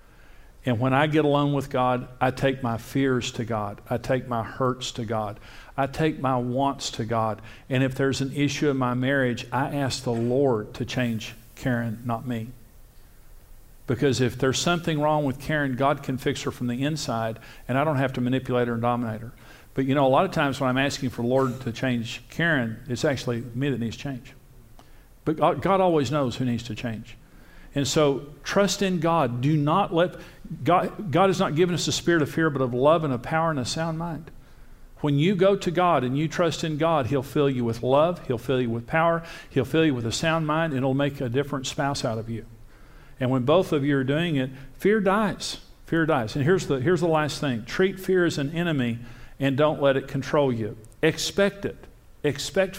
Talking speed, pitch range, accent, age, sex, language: 220 wpm, 120-155 Hz, American, 50-69, male, English